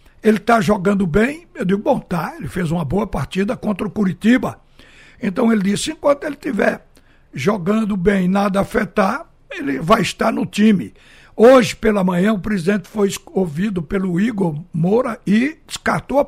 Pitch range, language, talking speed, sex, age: 180-220 Hz, Portuguese, 160 wpm, male, 60-79